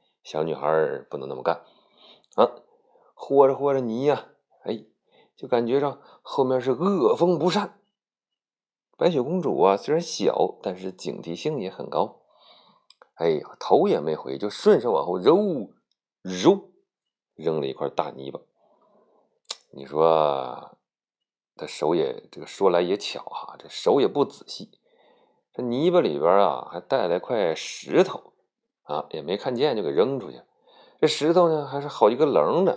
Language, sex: Chinese, male